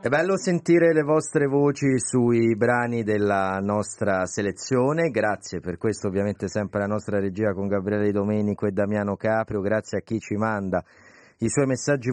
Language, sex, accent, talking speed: Italian, male, native, 165 wpm